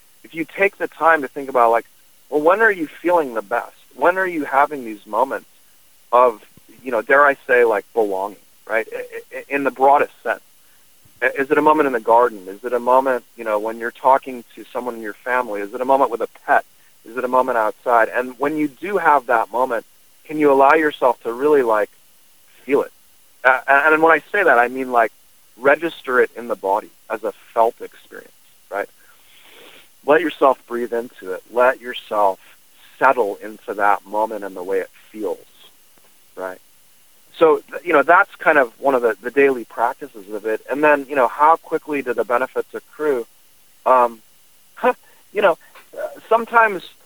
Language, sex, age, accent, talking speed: English, male, 40-59, American, 185 wpm